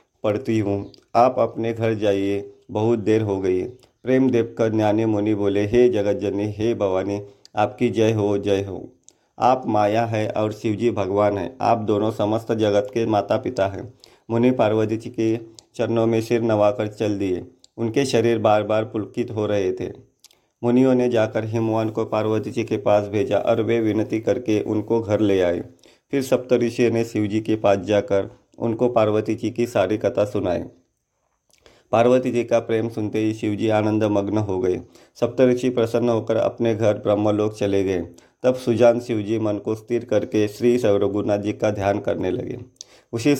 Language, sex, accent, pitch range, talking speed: Hindi, male, native, 105-115 Hz, 175 wpm